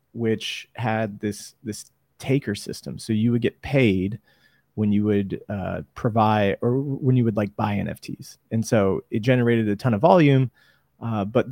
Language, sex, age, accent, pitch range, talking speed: English, male, 30-49, American, 105-130 Hz, 170 wpm